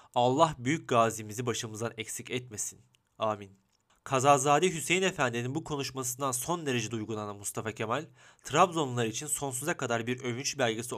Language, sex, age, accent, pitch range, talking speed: Turkish, male, 30-49, native, 115-145 Hz, 130 wpm